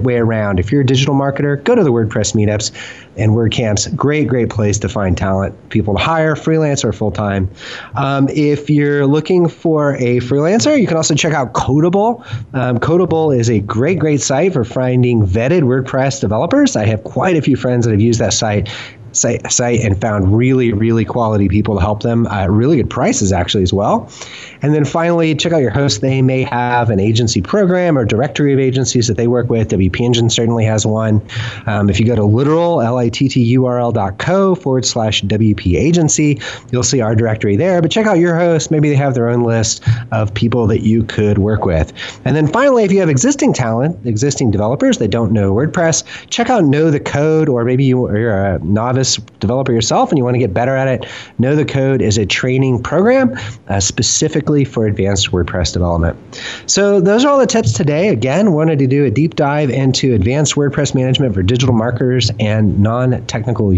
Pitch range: 110-145 Hz